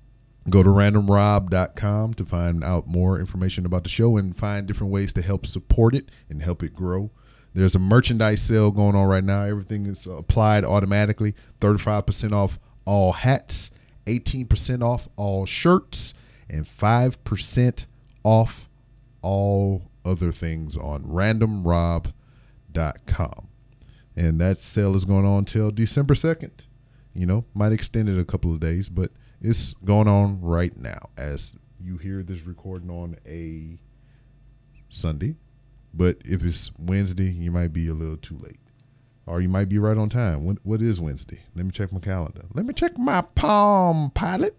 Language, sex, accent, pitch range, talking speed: English, male, American, 90-125 Hz, 155 wpm